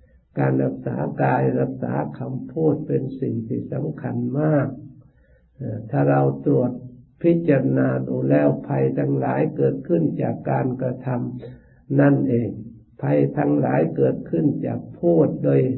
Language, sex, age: Thai, male, 60-79